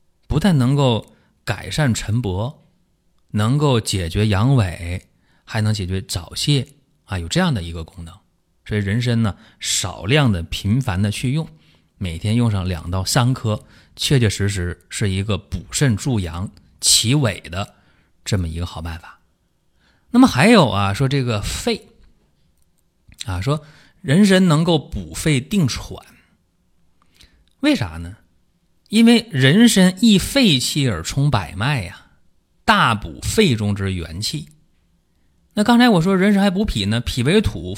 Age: 20-39